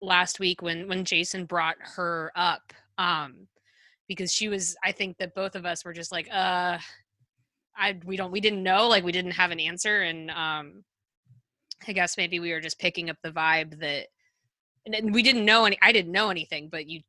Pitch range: 160-195 Hz